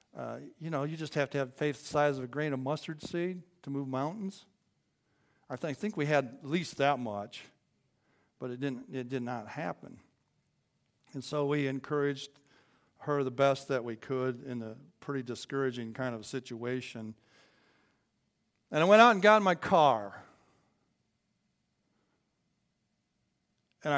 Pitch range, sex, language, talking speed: 125-160 Hz, male, English, 165 wpm